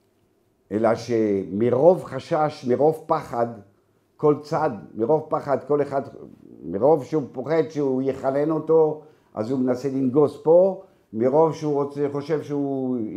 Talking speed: 125 wpm